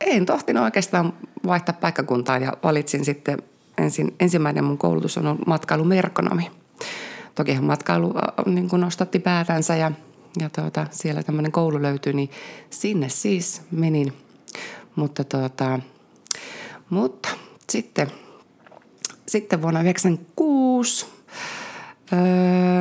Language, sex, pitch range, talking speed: Finnish, female, 140-180 Hz, 100 wpm